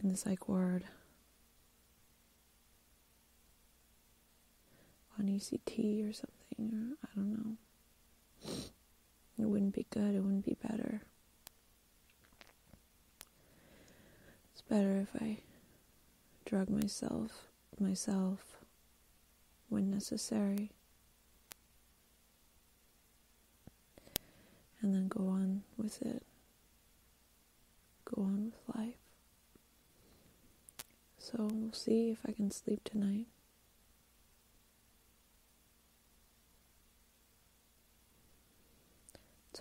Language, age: English, 30-49